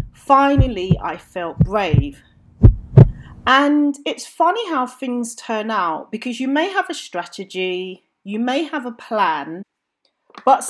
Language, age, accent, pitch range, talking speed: English, 40-59, British, 195-290 Hz, 130 wpm